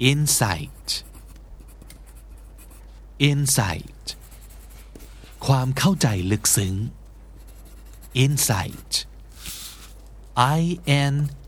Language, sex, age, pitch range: Thai, male, 60-79, 95-130 Hz